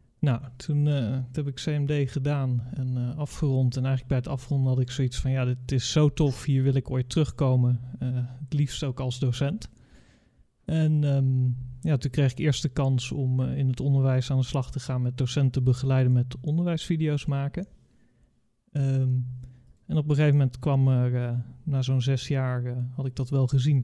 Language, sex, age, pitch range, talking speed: Dutch, male, 30-49, 130-150 Hz, 195 wpm